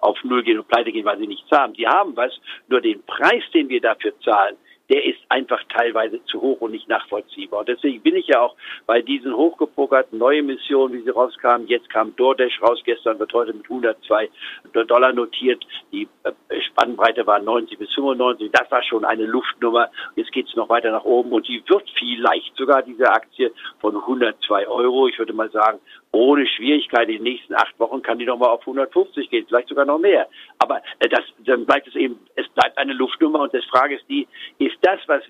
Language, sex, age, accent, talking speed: German, male, 60-79, German, 205 wpm